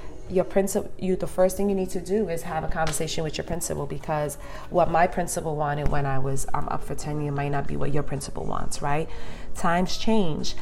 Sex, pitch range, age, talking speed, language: female, 150-185 Hz, 30-49, 220 wpm, English